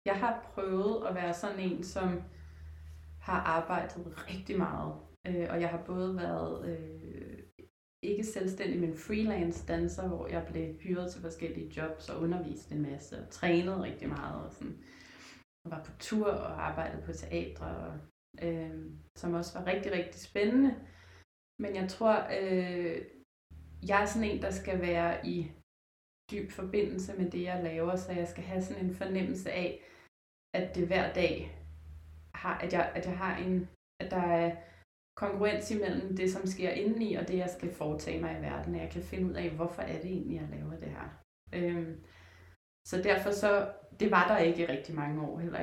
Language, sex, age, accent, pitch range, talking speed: Danish, female, 20-39, native, 145-185 Hz, 175 wpm